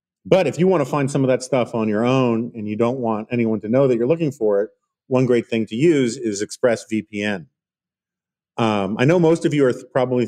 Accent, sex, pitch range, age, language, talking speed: American, male, 120-165 Hz, 40-59, English, 235 wpm